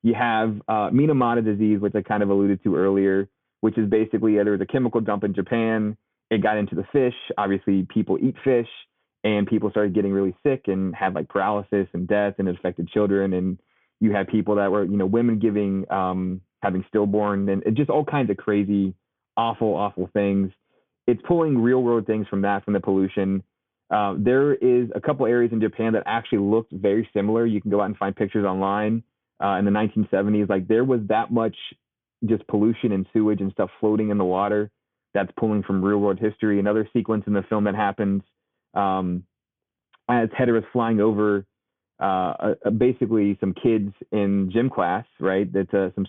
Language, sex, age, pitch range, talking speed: English, male, 30-49, 100-110 Hz, 195 wpm